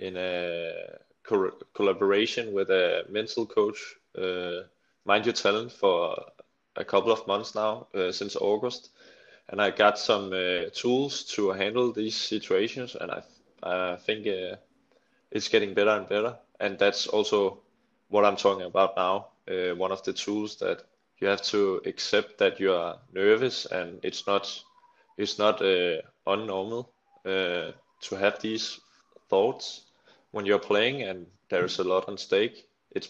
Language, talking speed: English, 160 wpm